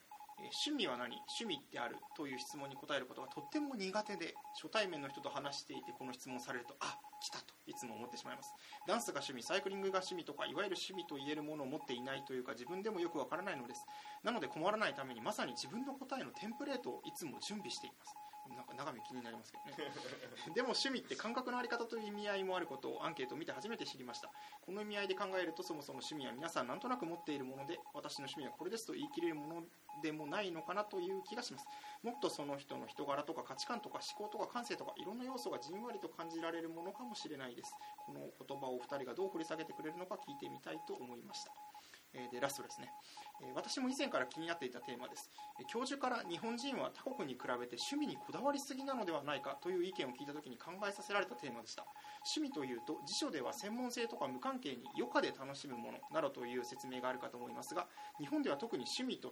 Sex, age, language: male, 20-39, Japanese